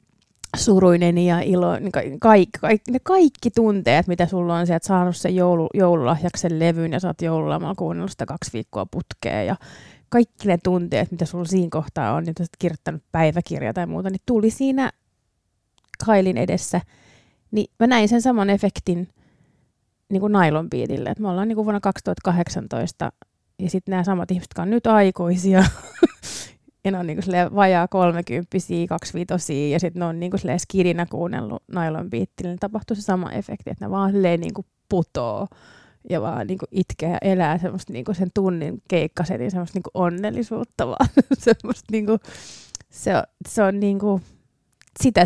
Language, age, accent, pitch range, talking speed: Finnish, 30-49, native, 175-205 Hz, 145 wpm